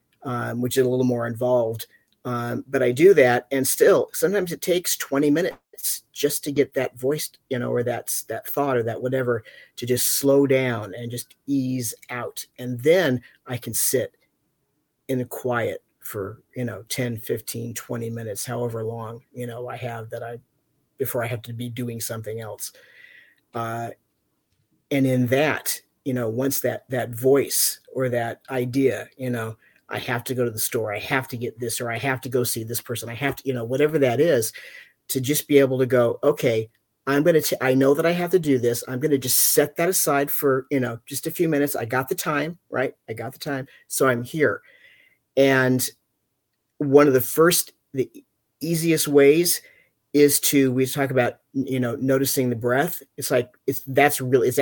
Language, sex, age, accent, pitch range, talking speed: English, male, 40-59, American, 120-145 Hz, 200 wpm